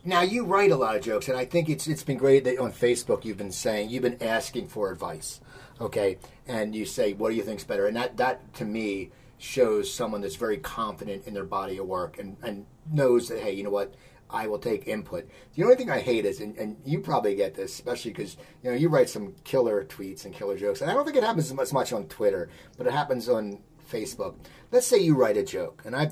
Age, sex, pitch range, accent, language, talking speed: 40-59, male, 125-205 Hz, American, English, 250 wpm